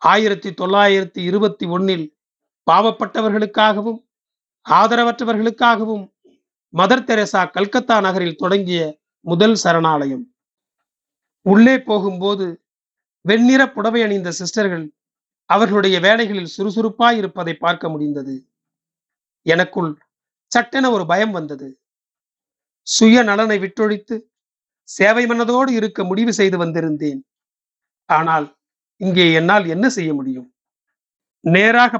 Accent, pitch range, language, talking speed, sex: native, 175-225 Hz, Tamil, 85 wpm, male